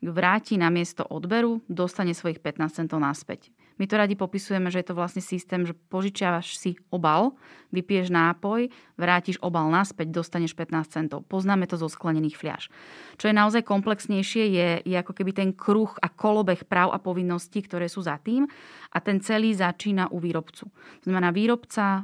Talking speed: 170 wpm